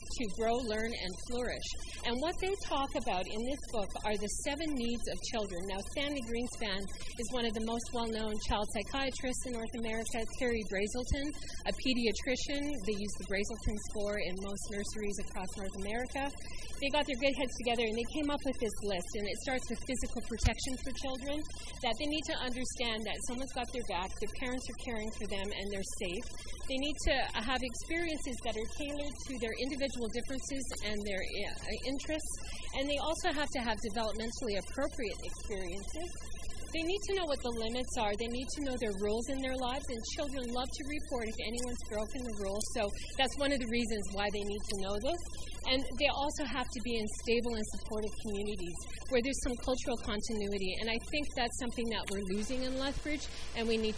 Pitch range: 215-265 Hz